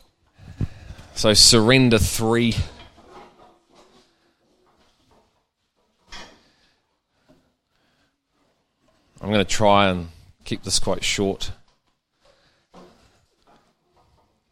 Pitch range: 95-110 Hz